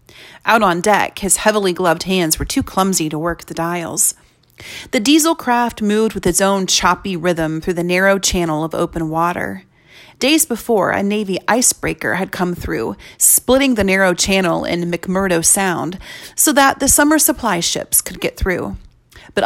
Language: English